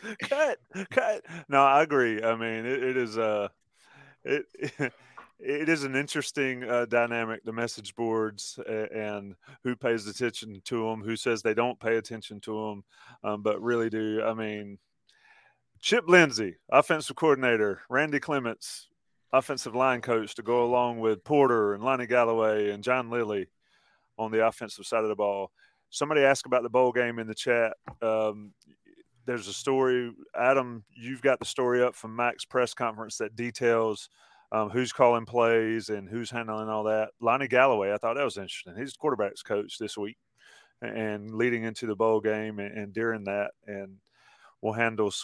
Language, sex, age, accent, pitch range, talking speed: English, male, 30-49, American, 105-125 Hz, 170 wpm